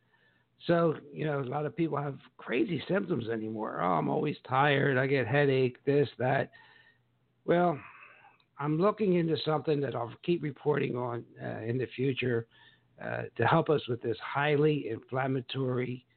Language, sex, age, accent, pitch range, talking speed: English, male, 60-79, American, 125-155 Hz, 155 wpm